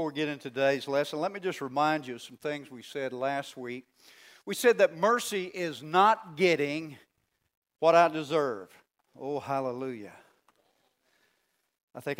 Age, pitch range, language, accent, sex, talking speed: 50-69, 150-210 Hz, English, American, male, 155 wpm